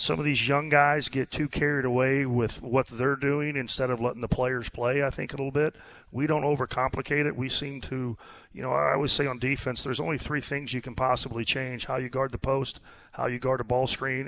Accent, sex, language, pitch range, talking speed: American, male, English, 120-135 Hz, 240 wpm